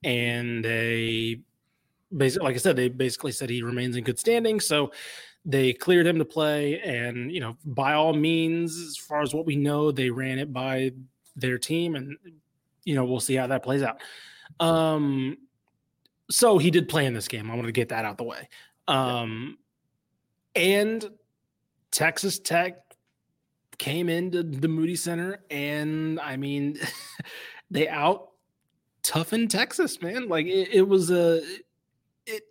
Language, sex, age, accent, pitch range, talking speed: English, male, 20-39, American, 125-165 Hz, 160 wpm